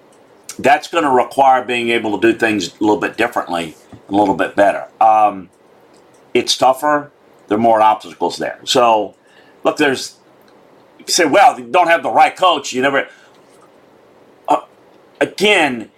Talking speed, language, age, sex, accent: 155 wpm, English, 50-69, male, American